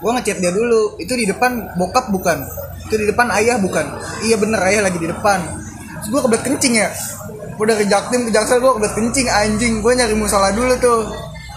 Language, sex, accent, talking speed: Indonesian, male, native, 205 wpm